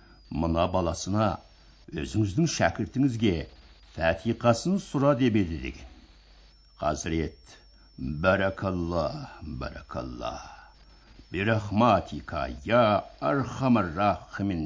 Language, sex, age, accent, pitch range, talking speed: Russian, male, 60-79, Turkish, 80-115 Hz, 85 wpm